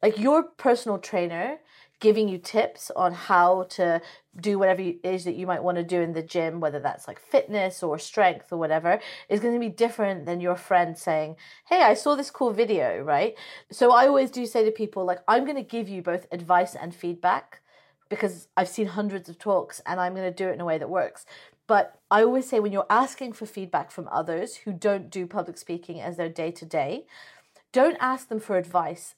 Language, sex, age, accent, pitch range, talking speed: English, female, 40-59, British, 175-225 Hz, 220 wpm